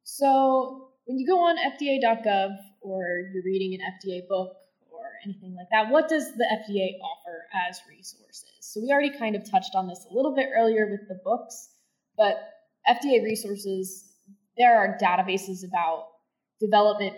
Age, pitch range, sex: 10-29, 190-240 Hz, female